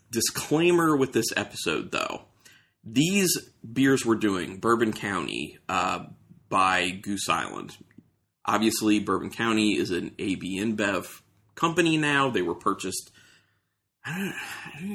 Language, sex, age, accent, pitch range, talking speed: English, male, 30-49, American, 100-120 Hz, 115 wpm